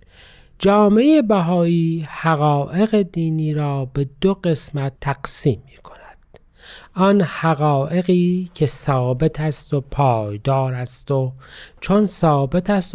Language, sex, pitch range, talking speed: Persian, male, 140-185 Hz, 105 wpm